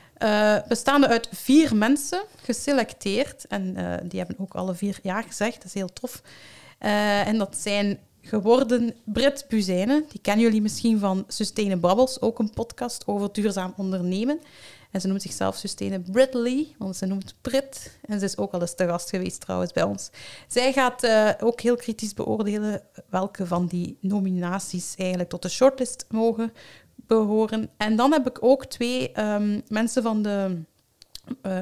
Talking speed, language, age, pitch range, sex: 170 wpm, Dutch, 30-49, 195-240 Hz, female